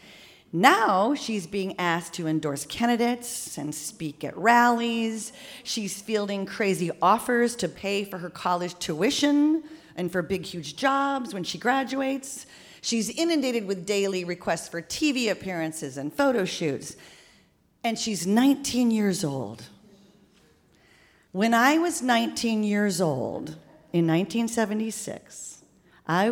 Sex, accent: female, American